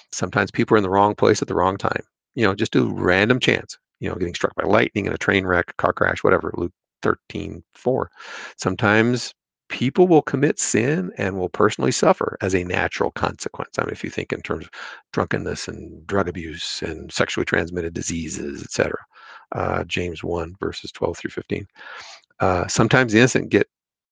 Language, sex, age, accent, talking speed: English, male, 50-69, American, 190 wpm